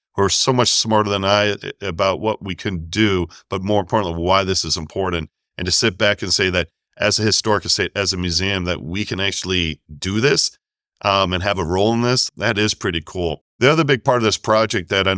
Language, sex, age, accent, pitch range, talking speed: English, male, 40-59, American, 90-110 Hz, 235 wpm